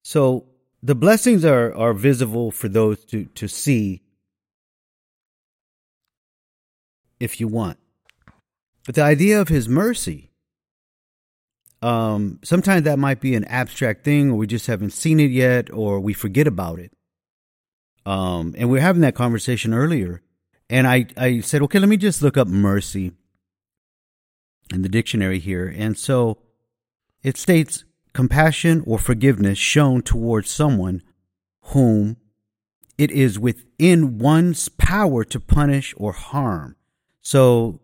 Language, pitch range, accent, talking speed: English, 110-150 Hz, American, 135 wpm